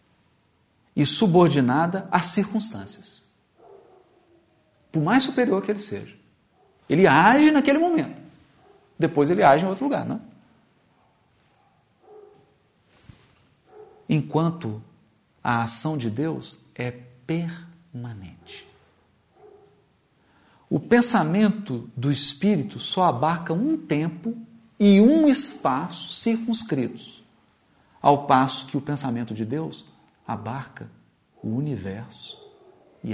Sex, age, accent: male, 50-69, Brazilian